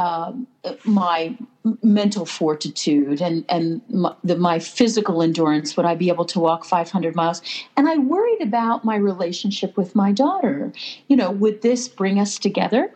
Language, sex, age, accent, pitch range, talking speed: English, female, 50-69, American, 175-250 Hz, 160 wpm